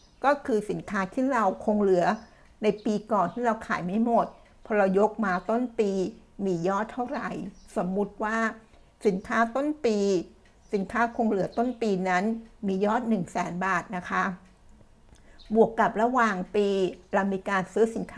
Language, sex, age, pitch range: Thai, female, 60-79, 190-230 Hz